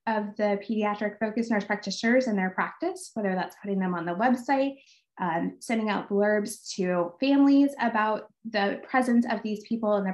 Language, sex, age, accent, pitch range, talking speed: English, female, 20-39, American, 200-245 Hz, 180 wpm